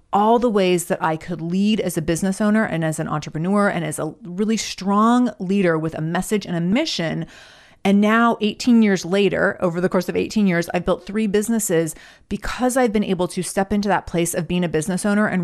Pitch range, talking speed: 175-215 Hz, 220 wpm